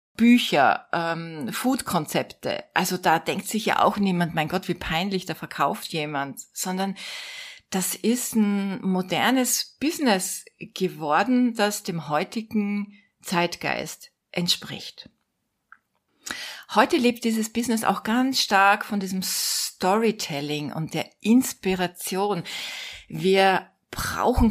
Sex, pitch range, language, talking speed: female, 170-220 Hz, German, 110 wpm